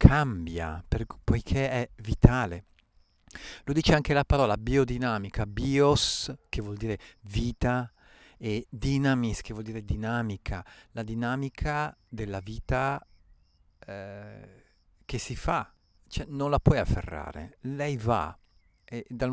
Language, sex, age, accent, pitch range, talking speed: Italian, male, 50-69, native, 100-130 Hz, 110 wpm